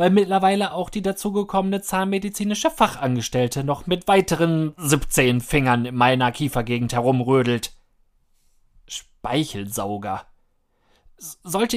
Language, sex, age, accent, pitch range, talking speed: German, male, 30-49, German, 125-195 Hz, 90 wpm